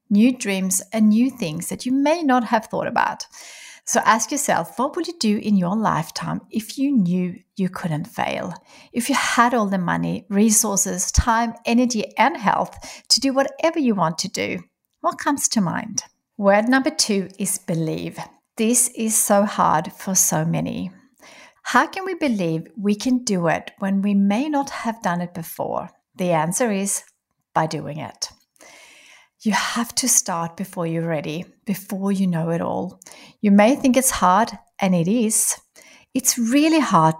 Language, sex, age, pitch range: English, female, 60-79, 180-250 Hz